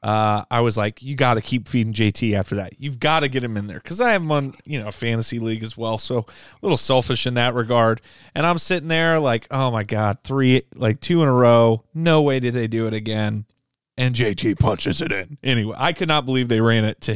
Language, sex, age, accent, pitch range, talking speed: English, male, 30-49, American, 115-145 Hz, 250 wpm